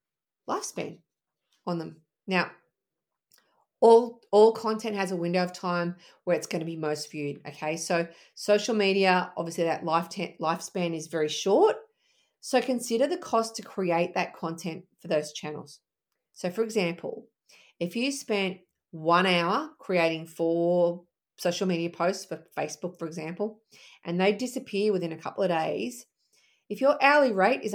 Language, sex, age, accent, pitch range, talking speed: English, female, 40-59, Australian, 170-210 Hz, 155 wpm